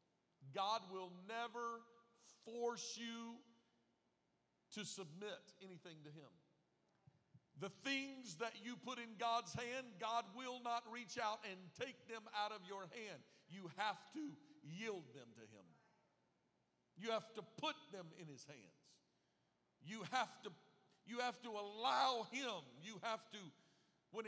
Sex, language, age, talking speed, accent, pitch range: male, English, 50-69, 140 wpm, American, 175-230 Hz